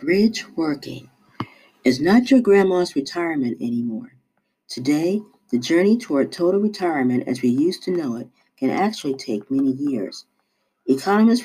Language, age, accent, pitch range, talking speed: English, 50-69, American, 135-215 Hz, 135 wpm